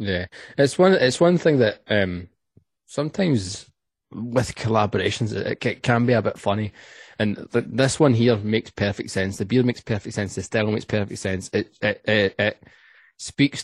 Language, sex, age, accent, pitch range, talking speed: English, male, 20-39, British, 100-115 Hz, 180 wpm